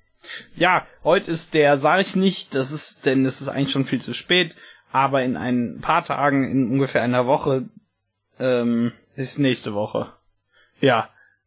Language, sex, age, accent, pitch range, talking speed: German, male, 20-39, German, 120-150 Hz, 160 wpm